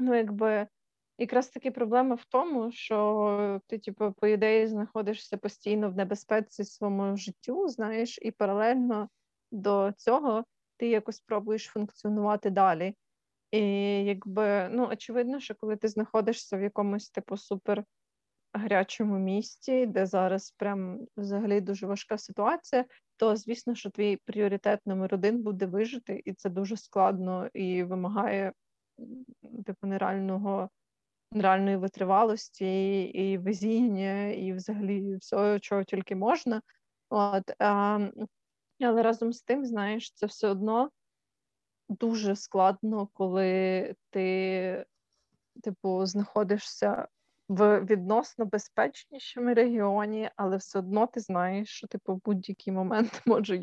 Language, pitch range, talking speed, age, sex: Ukrainian, 195-225 Hz, 115 wpm, 20-39, female